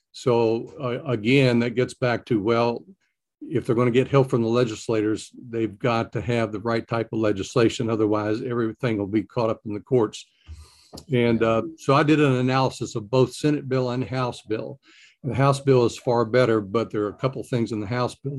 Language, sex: English, male